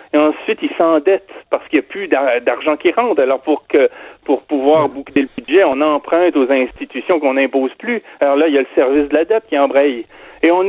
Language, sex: French, male